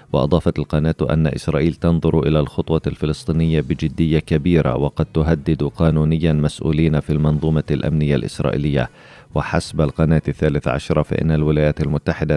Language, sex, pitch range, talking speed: Arabic, male, 75-85 Hz, 120 wpm